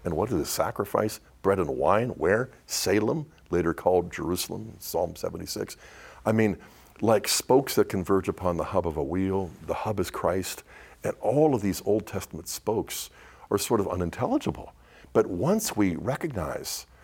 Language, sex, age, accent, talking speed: English, male, 60-79, American, 160 wpm